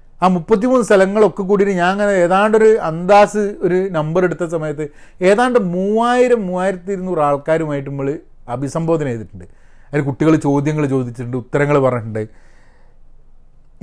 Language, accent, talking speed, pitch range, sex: Malayalam, native, 115 wpm, 140-195 Hz, male